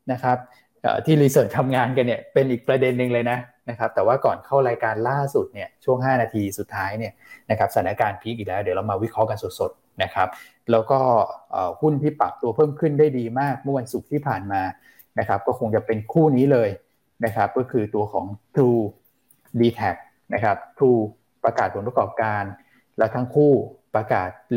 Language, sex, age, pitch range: Thai, male, 20-39, 110-135 Hz